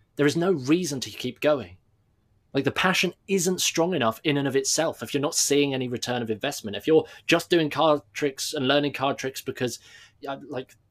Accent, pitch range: British, 120-150 Hz